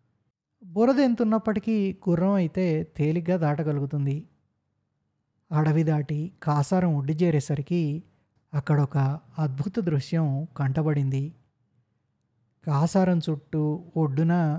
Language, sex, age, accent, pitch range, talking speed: Telugu, male, 20-39, native, 145-175 Hz, 75 wpm